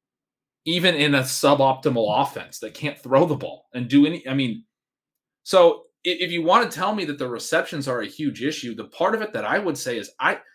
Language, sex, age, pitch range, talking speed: English, male, 30-49, 130-180 Hz, 230 wpm